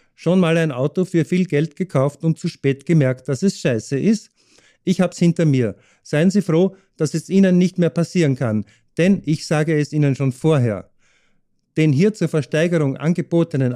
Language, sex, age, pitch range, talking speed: German, male, 50-69, 135-170 Hz, 185 wpm